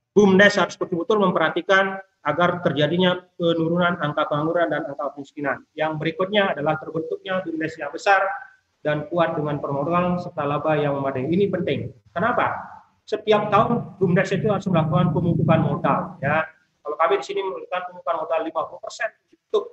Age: 30-49